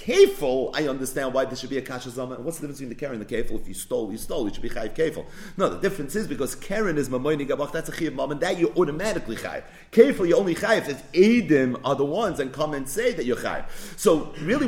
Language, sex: English, male